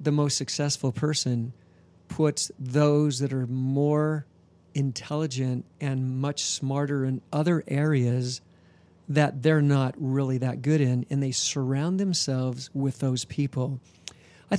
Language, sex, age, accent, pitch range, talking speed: English, male, 50-69, American, 125-155 Hz, 130 wpm